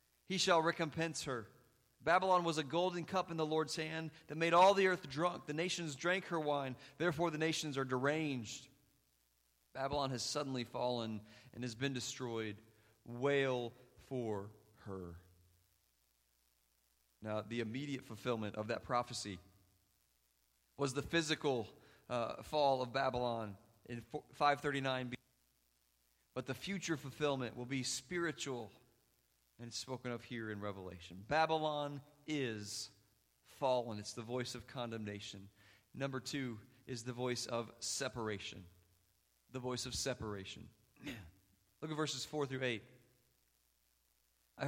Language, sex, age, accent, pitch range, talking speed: English, male, 40-59, American, 105-150 Hz, 130 wpm